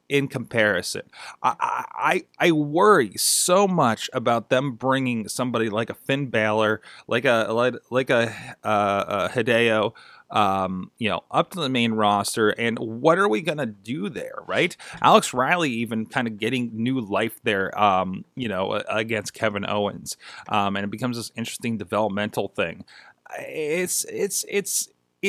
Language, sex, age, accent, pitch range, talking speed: English, male, 30-49, American, 105-150 Hz, 155 wpm